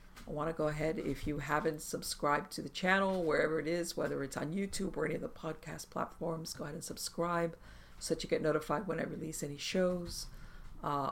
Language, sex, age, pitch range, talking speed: English, female, 50-69, 140-165 Hz, 215 wpm